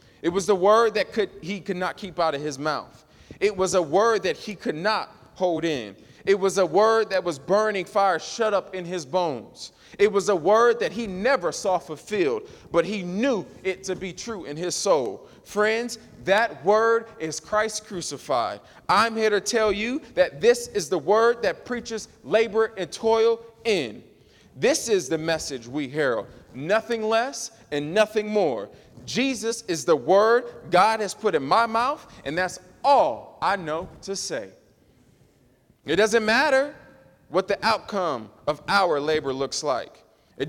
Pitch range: 165-230 Hz